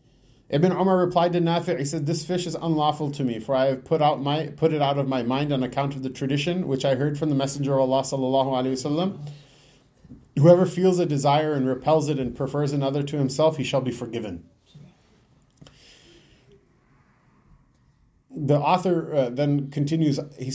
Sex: male